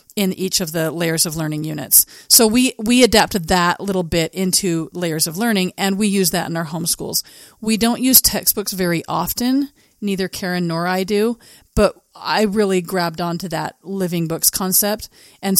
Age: 40-59